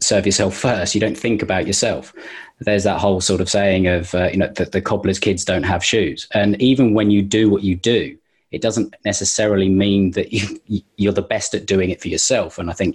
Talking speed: 230 wpm